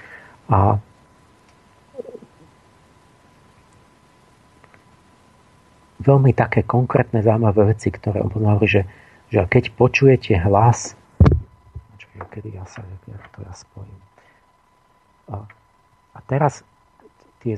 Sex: male